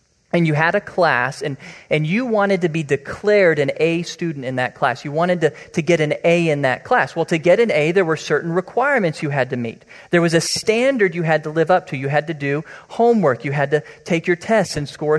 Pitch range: 140-175 Hz